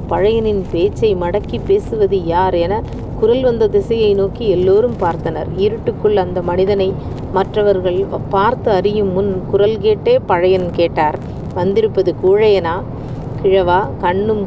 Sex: female